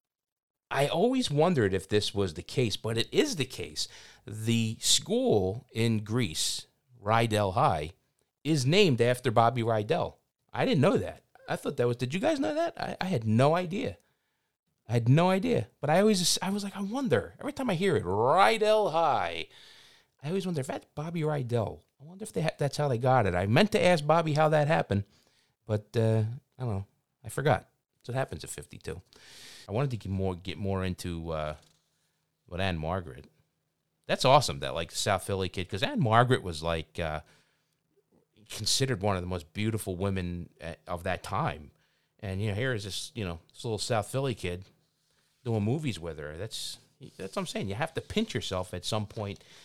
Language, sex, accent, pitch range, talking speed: English, male, American, 95-145 Hz, 195 wpm